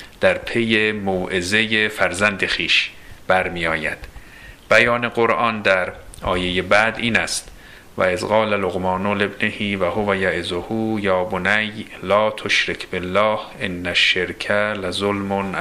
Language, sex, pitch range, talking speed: Persian, male, 90-105 Hz, 120 wpm